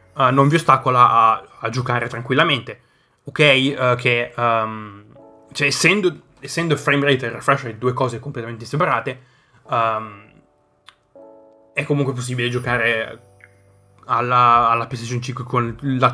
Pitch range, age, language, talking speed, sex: 115-135 Hz, 20-39, Italian, 125 wpm, male